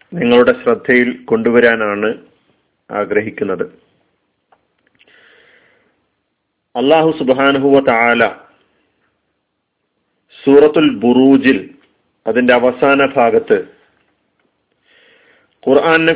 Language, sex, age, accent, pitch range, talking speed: Malayalam, male, 40-59, native, 125-165 Hz, 35 wpm